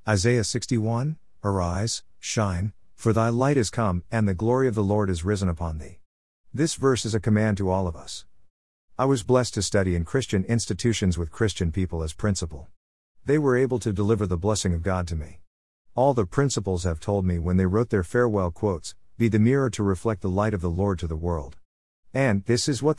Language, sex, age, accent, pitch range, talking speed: English, male, 50-69, American, 90-115 Hz, 210 wpm